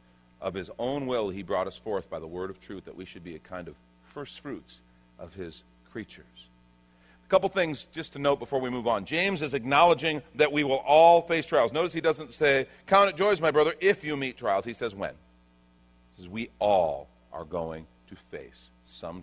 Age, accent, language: 50-69, American, English